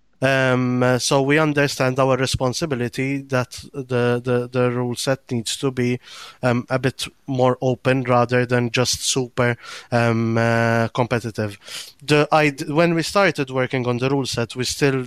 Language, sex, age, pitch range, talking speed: English, male, 30-49, 120-140 Hz, 155 wpm